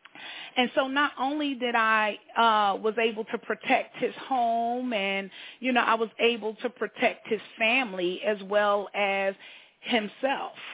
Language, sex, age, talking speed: English, female, 30-49, 150 wpm